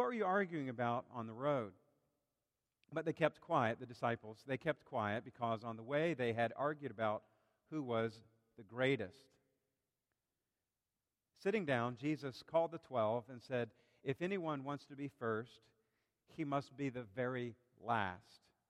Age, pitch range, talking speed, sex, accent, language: 50-69, 115-140 Hz, 155 wpm, male, American, English